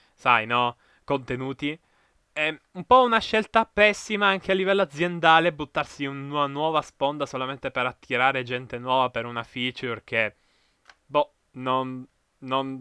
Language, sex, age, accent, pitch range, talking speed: Italian, male, 20-39, native, 130-175 Hz, 140 wpm